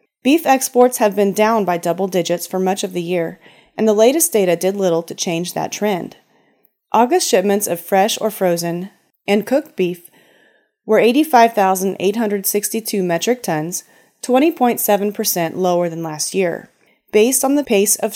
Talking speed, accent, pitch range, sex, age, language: 150 wpm, American, 175-230 Hz, female, 30-49, English